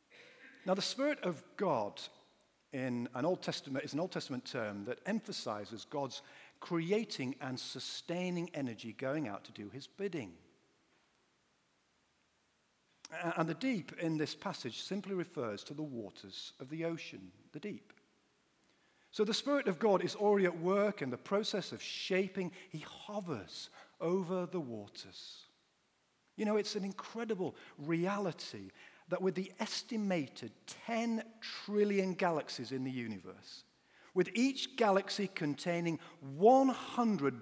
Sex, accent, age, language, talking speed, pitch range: male, British, 50-69, English, 135 wpm, 135-205 Hz